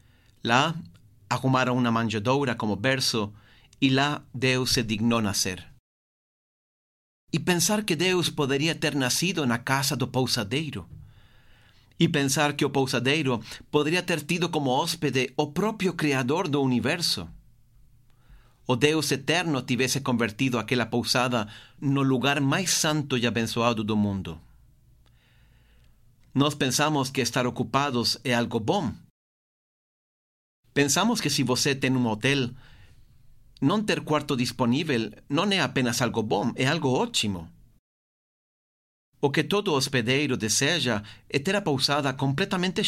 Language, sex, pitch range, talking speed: Portuguese, male, 115-145 Hz, 125 wpm